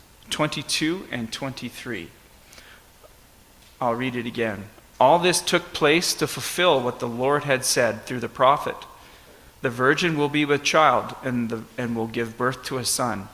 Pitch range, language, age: 115-150 Hz, English, 40-59